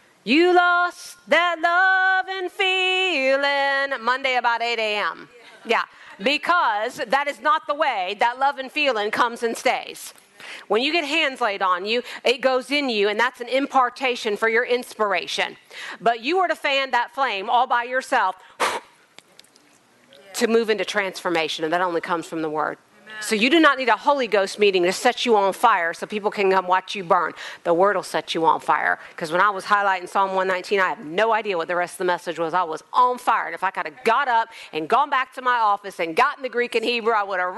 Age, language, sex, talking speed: 40-59, English, female, 215 wpm